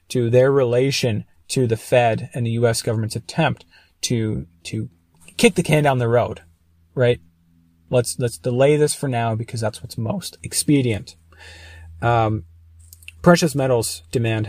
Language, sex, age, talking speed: English, male, 30-49, 145 wpm